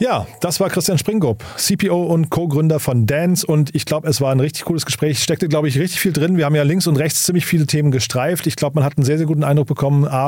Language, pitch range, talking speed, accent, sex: German, 140-165 Hz, 270 wpm, German, male